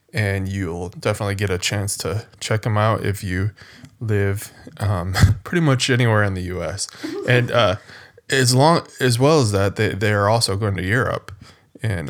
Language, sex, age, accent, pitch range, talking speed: English, male, 20-39, American, 105-125 Hz, 180 wpm